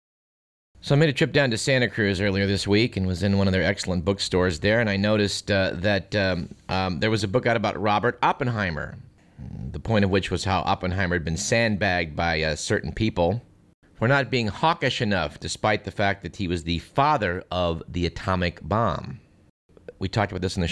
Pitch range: 90-115 Hz